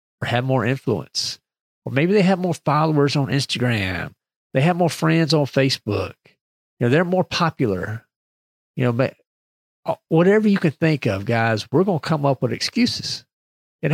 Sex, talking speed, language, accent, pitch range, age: male, 170 wpm, English, American, 115-165 Hz, 50-69